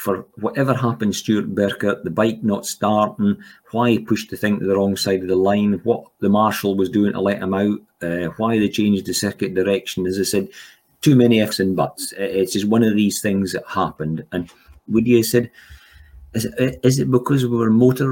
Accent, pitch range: British, 95-110 Hz